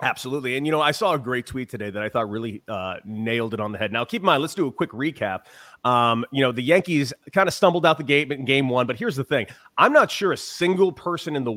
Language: English